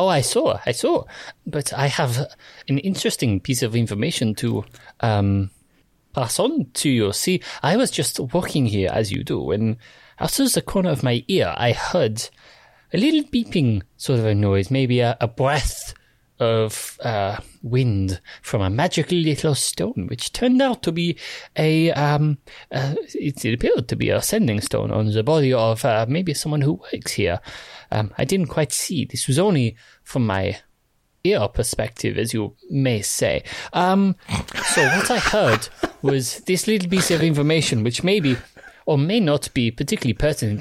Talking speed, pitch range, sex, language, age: 175 wpm, 115-155 Hz, male, English, 30-49